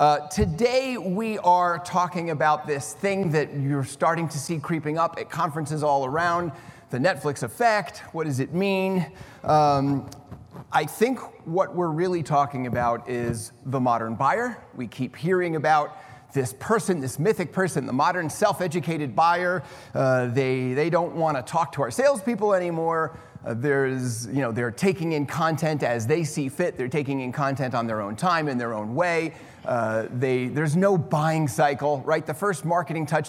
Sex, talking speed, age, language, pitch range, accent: male, 175 wpm, 30-49, English, 130-170 Hz, American